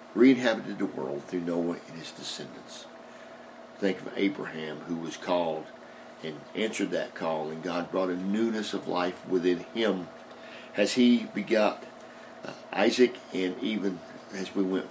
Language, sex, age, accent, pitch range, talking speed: English, male, 50-69, American, 90-100 Hz, 145 wpm